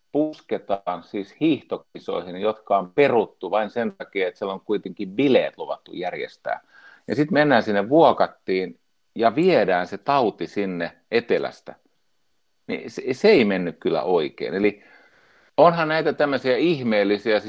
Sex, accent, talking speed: male, native, 125 wpm